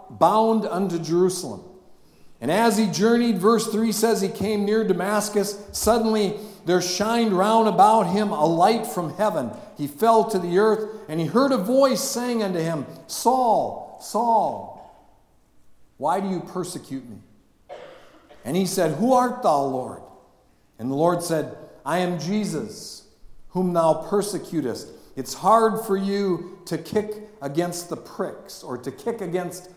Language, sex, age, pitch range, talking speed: English, male, 50-69, 160-215 Hz, 150 wpm